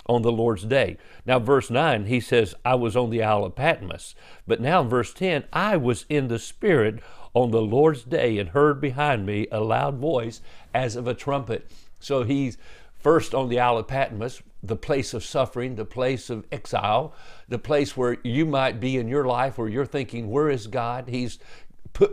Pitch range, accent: 120-145 Hz, American